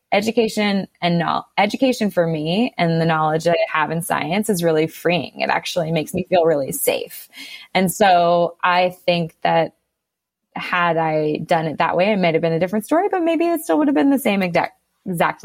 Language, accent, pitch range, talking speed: English, American, 160-185 Hz, 200 wpm